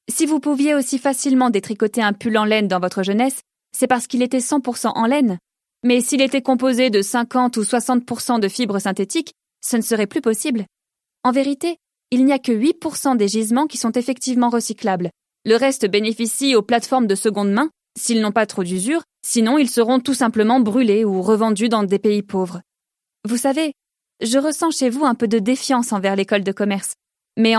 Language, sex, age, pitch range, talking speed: French, female, 20-39, 220-275 Hz, 195 wpm